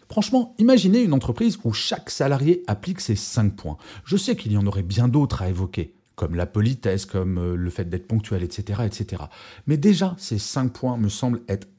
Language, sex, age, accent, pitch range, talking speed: French, male, 40-59, French, 100-135 Hz, 200 wpm